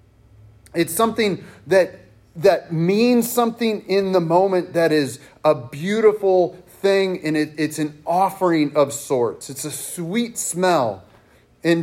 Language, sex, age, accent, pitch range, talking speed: English, male, 30-49, American, 150-190 Hz, 130 wpm